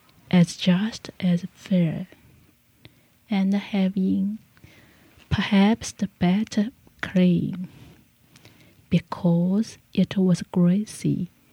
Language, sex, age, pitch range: Korean, female, 30-49, 155-190 Hz